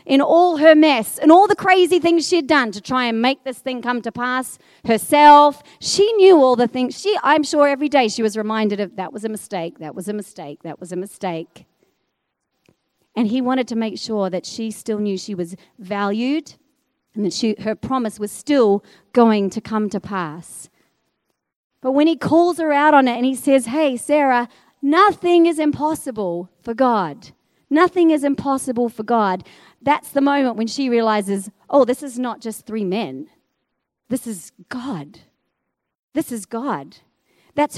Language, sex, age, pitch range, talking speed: English, female, 40-59, 205-290 Hz, 185 wpm